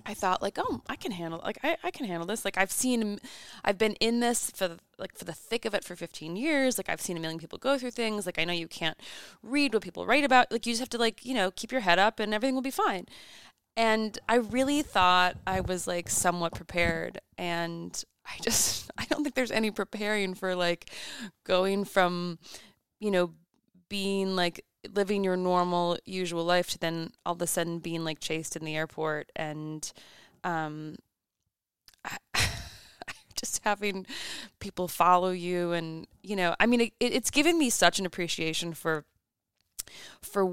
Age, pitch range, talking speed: 20-39, 170-220 Hz, 190 wpm